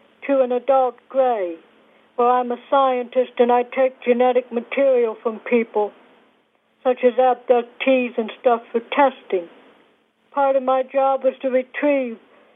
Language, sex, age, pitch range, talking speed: English, female, 60-79, 245-270 Hz, 140 wpm